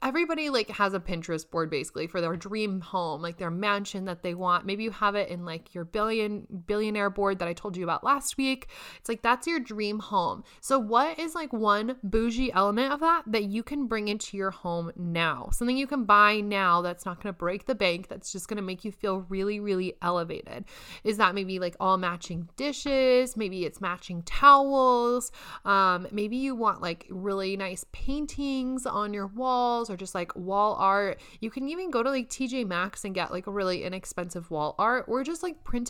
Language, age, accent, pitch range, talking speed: English, 20-39, American, 185-235 Hz, 205 wpm